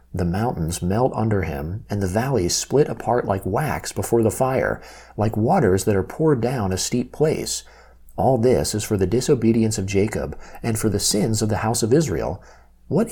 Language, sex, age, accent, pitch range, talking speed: English, male, 40-59, American, 95-125 Hz, 190 wpm